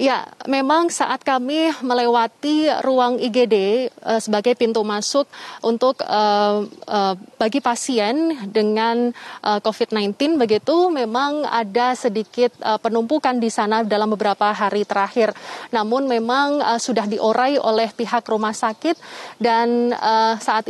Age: 20-39